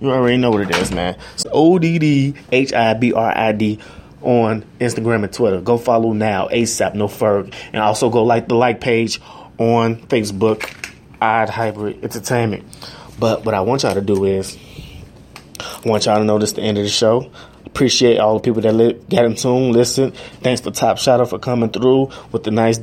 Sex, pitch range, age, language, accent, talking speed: male, 110-125 Hz, 20-39, English, American, 185 wpm